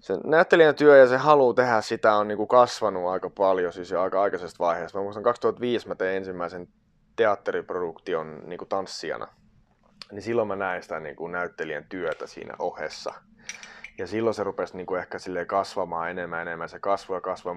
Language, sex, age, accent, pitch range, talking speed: Finnish, male, 30-49, native, 90-150 Hz, 155 wpm